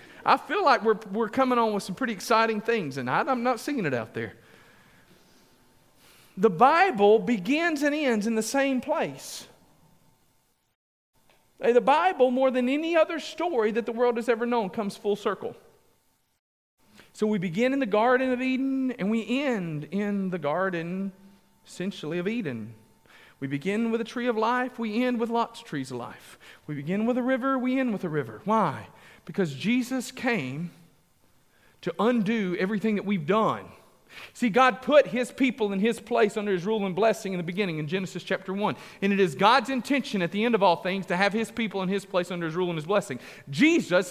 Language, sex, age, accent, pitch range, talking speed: English, male, 40-59, American, 195-255 Hz, 195 wpm